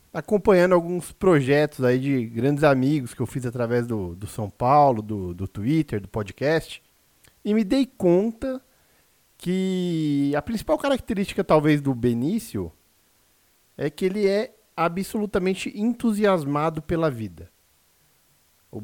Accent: Brazilian